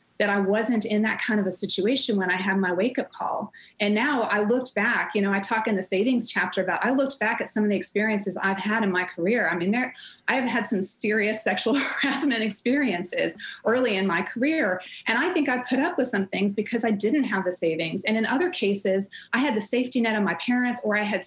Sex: female